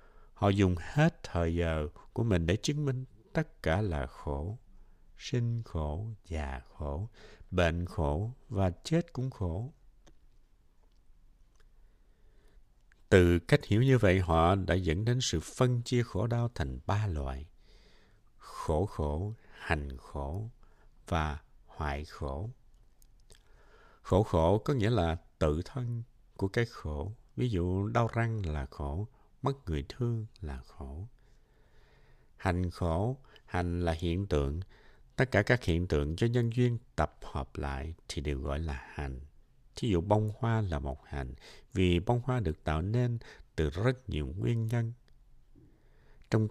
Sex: male